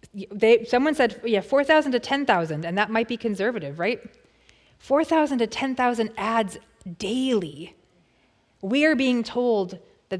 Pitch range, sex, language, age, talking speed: 195-245 Hz, female, English, 20-39, 135 wpm